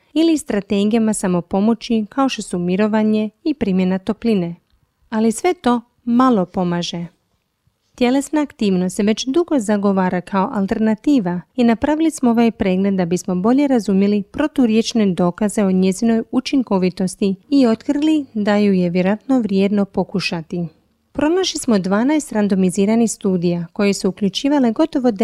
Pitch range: 190-245 Hz